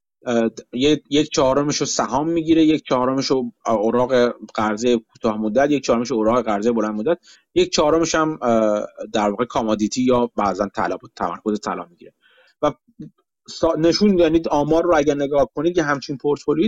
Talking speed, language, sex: 140 wpm, Persian, male